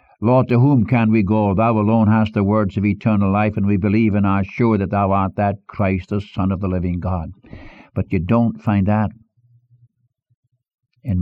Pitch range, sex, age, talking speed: 100-140 Hz, male, 60-79, 200 wpm